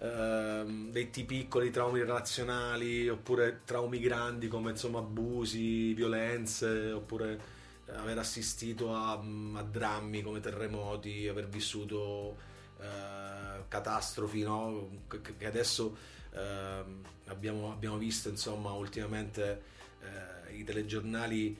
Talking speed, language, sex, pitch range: 100 wpm, Italian, male, 105-120 Hz